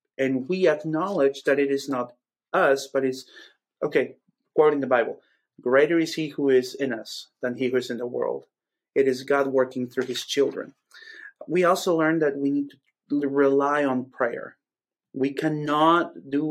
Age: 30-49